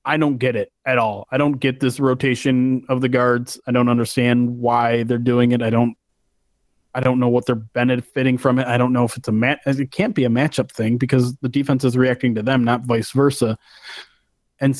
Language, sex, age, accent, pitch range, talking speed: English, male, 30-49, American, 125-145 Hz, 225 wpm